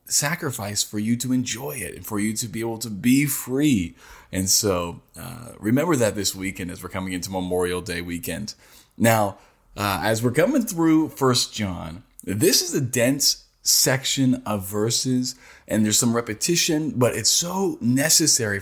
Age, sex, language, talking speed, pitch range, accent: 20-39, male, English, 170 wpm, 100-140 Hz, American